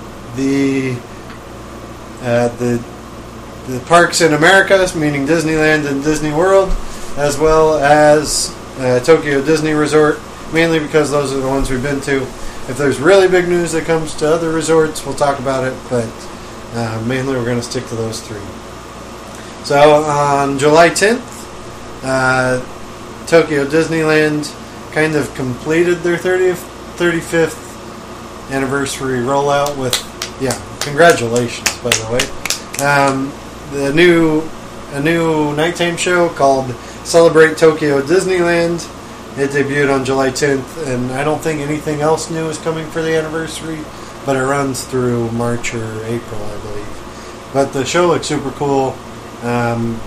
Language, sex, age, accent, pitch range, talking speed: English, male, 20-39, American, 120-155 Hz, 140 wpm